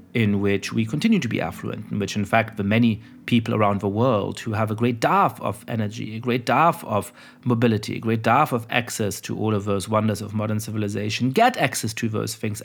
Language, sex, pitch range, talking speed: English, male, 110-125 Hz, 225 wpm